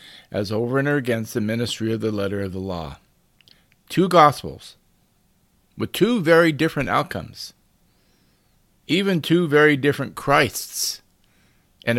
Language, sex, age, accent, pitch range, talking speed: English, male, 50-69, American, 110-155 Hz, 125 wpm